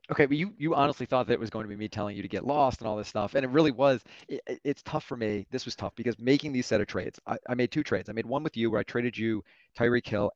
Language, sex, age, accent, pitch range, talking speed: English, male, 30-49, American, 105-130 Hz, 320 wpm